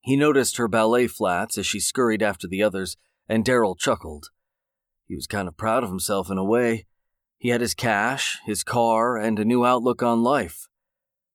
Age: 40-59